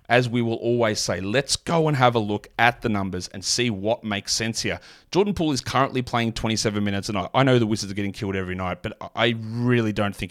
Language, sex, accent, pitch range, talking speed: English, male, Australian, 100-120 Hz, 250 wpm